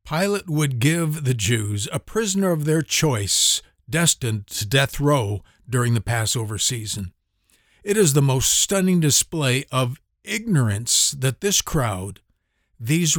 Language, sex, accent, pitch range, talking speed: English, male, American, 110-150 Hz, 135 wpm